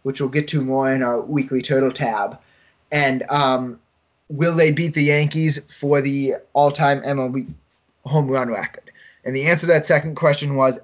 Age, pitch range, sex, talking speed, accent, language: 20-39, 130-155 Hz, male, 175 wpm, American, English